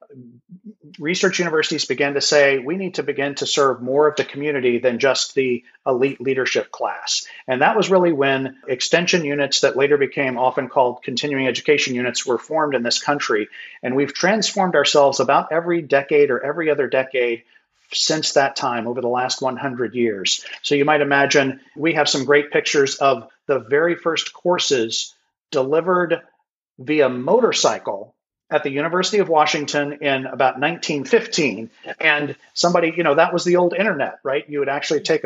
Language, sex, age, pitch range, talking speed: English, male, 40-59, 135-165 Hz, 170 wpm